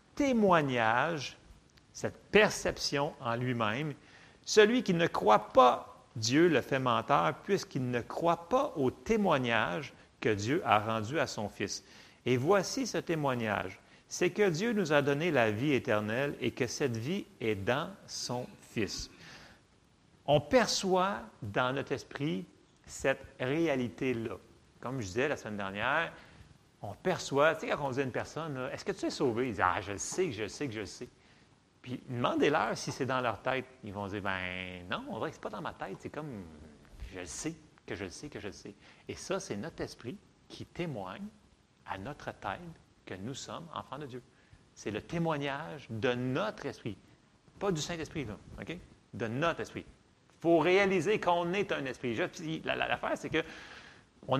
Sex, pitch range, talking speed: male, 115-170 Hz, 180 wpm